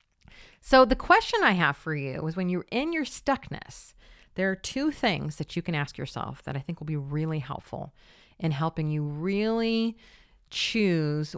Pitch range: 155-250 Hz